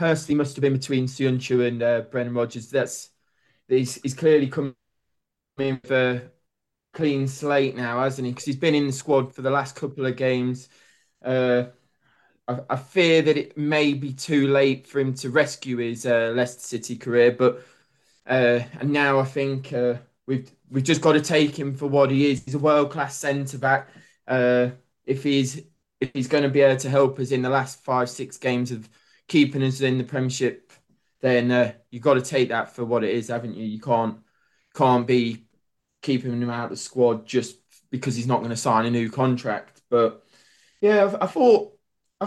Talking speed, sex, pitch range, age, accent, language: 195 wpm, male, 125-145 Hz, 20-39, British, English